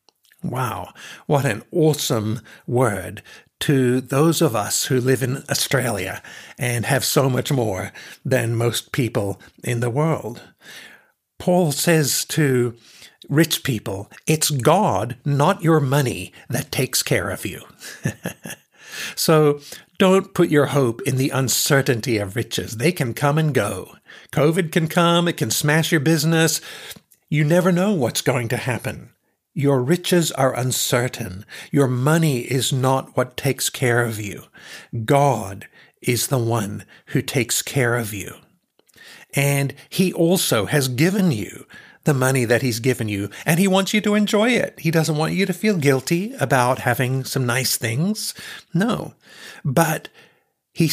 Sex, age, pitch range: male, 60-79, 120-160 Hz